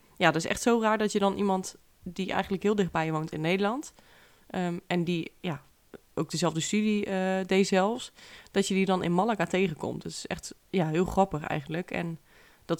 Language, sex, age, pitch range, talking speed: Dutch, female, 20-39, 165-195 Hz, 205 wpm